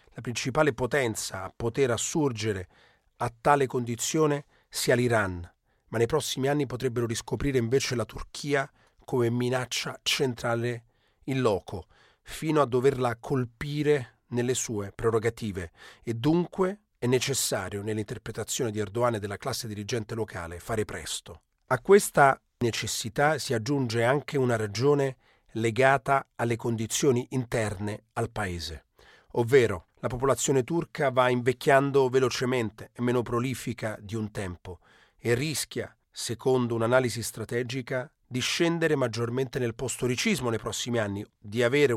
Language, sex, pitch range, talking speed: Italian, male, 110-135 Hz, 125 wpm